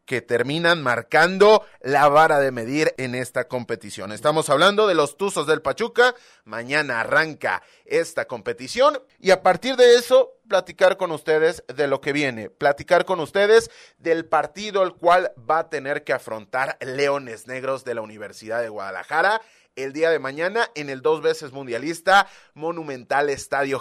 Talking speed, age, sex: 160 wpm, 30-49, male